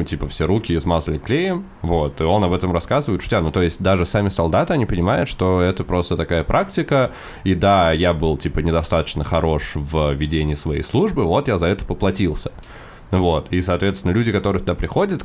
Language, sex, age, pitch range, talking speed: Russian, male, 20-39, 80-100 Hz, 190 wpm